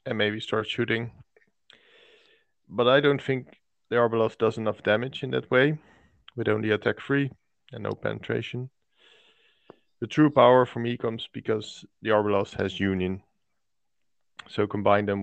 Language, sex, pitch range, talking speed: English, male, 105-130 Hz, 145 wpm